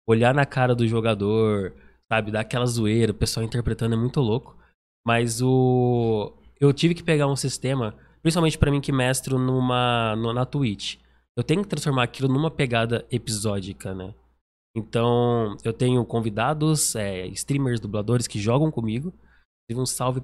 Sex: male